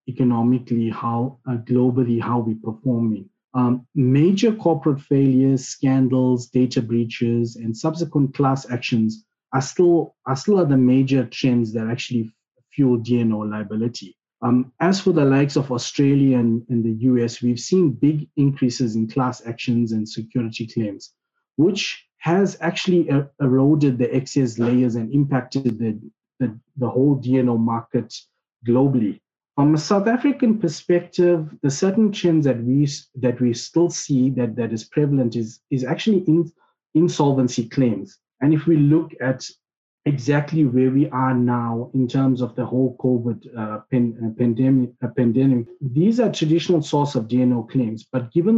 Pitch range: 120-145 Hz